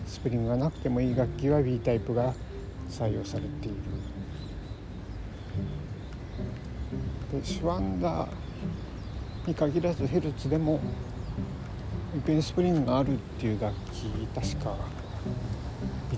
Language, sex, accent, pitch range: Japanese, male, native, 95-125 Hz